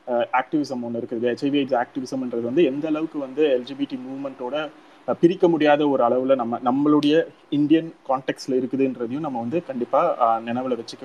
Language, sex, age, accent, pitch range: Tamil, male, 30-49, native, 130-170 Hz